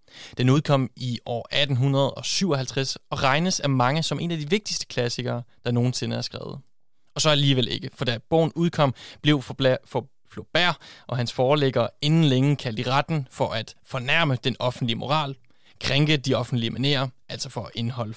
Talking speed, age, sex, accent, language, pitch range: 175 wpm, 30-49, male, native, Danish, 125-155 Hz